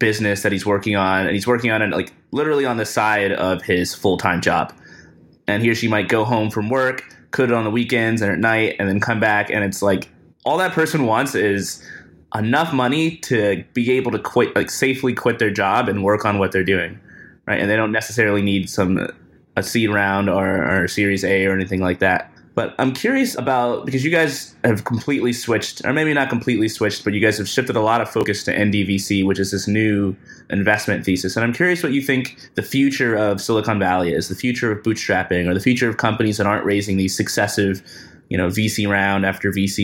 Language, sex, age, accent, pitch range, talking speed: English, male, 20-39, American, 100-120 Hz, 220 wpm